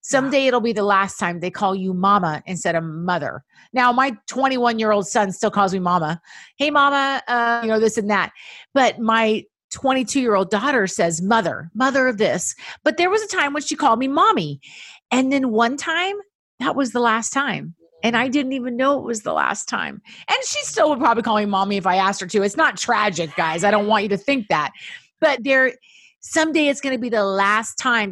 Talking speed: 215 wpm